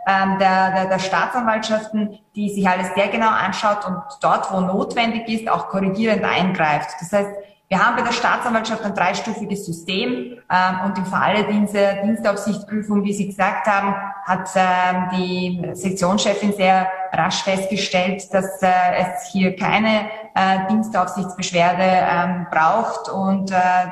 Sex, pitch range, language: female, 180-205 Hz, German